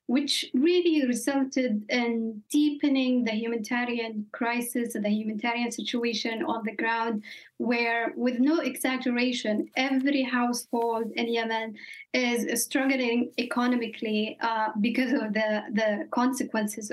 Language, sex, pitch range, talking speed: English, female, 230-270 Hz, 115 wpm